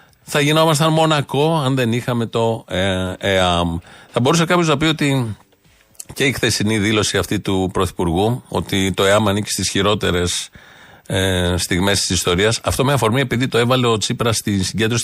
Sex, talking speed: male, 160 wpm